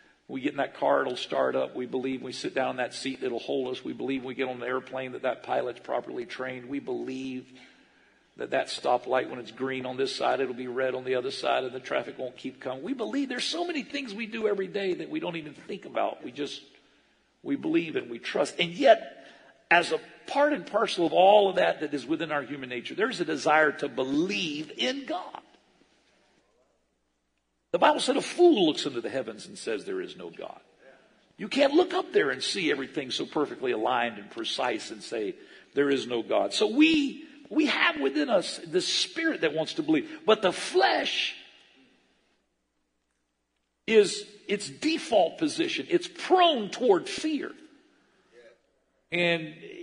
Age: 50-69